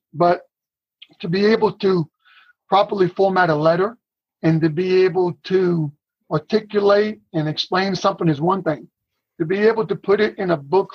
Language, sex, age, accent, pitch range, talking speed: English, male, 50-69, American, 170-200 Hz, 165 wpm